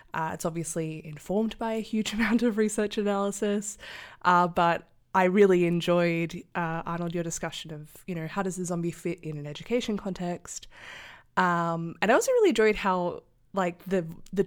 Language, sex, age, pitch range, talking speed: English, female, 20-39, 165-205 Hz, 170 wpm